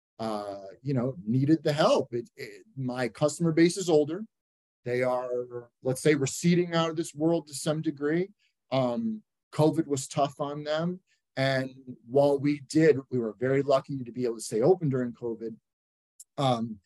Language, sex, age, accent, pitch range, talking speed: English, male, 30-49, American, 125-150 Hz, 165 wpm